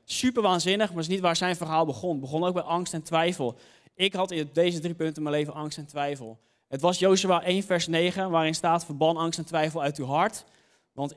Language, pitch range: Dutch, 145-180 Hz